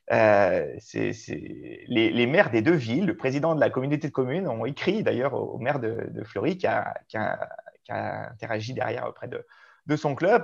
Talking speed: 220 wpm